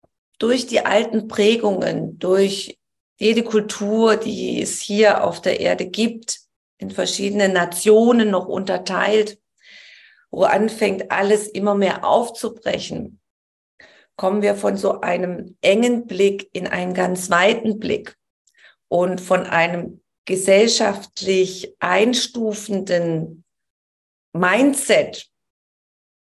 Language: German